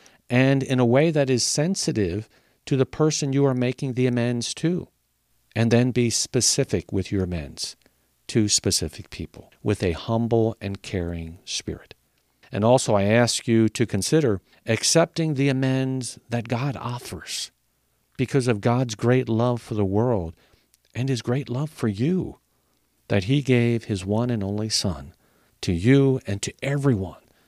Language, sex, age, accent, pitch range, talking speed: English, male, 50-69, American, 95-130 Hz, 155 wpm